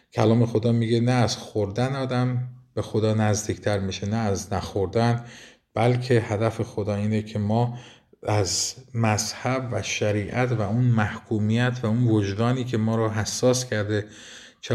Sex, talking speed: male, 145 wpm